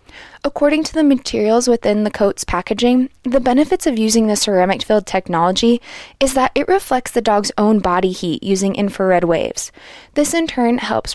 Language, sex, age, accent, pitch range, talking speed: English, female, 20-39, American, 185-245 Hz, 165 wpm